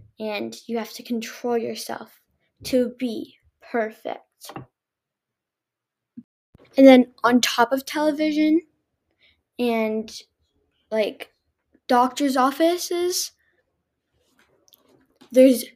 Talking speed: 75 wpm